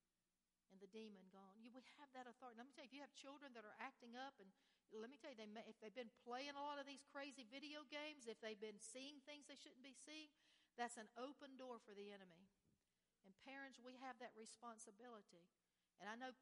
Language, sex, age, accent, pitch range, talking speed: English, female, 60-79, American, 220-280 Hz, 225 wpm